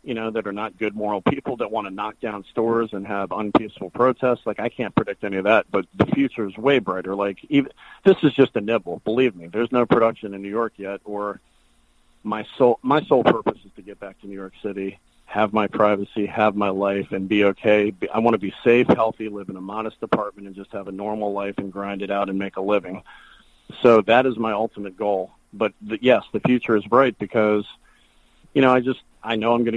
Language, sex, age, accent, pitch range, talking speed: English, male, 40-59, American, 100-120 Hz, 235 wpm